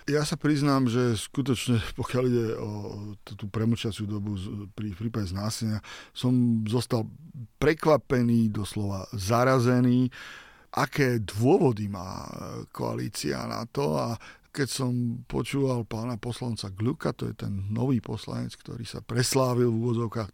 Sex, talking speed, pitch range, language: male, 125 wpm, 115-130 Hz, Slovak